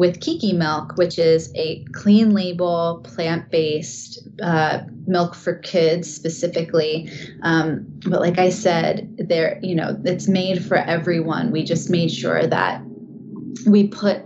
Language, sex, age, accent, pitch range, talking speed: English, female, 20-39, American, 165-200 Hz, 140 wpm